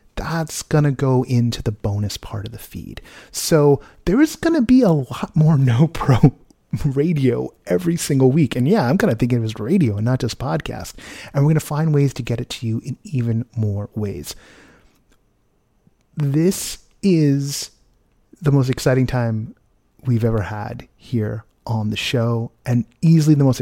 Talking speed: 180 wpm